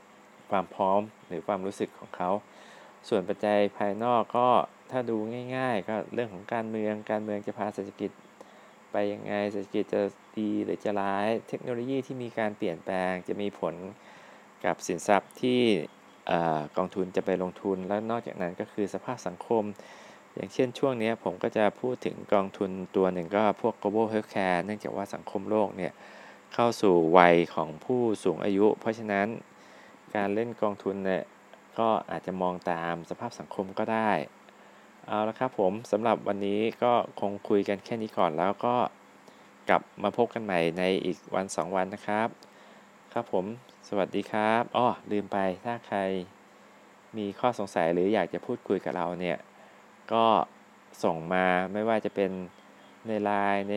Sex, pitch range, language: male, 95-110 Hz, Thai